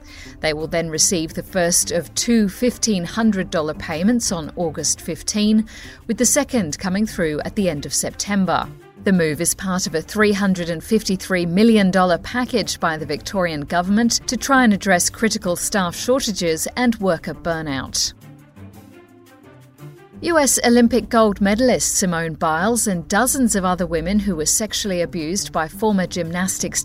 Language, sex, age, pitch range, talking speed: English, female, 50-69, 165-215 Hz, 145 wpm